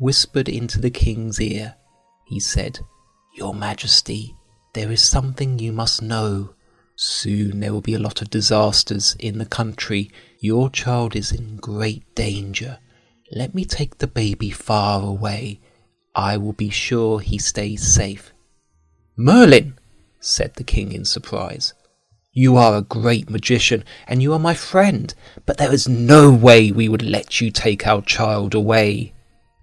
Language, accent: Chinese, British